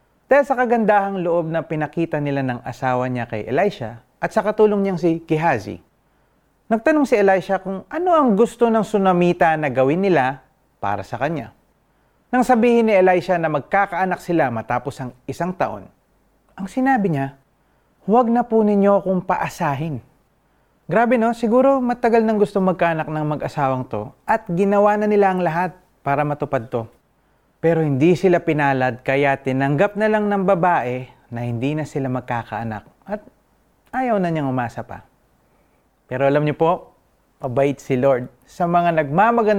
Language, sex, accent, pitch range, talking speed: Filipino, male, native, 135-200 Hz, 155 wpm